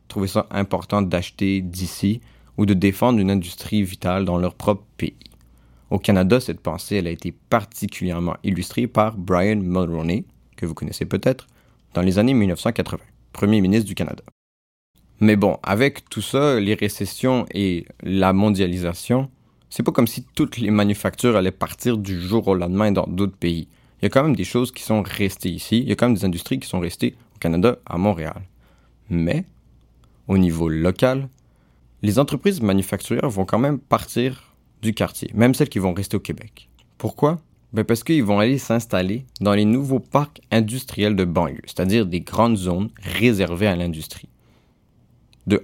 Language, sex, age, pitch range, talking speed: French, male, 30-49, 90-115 Hz, 175 wpm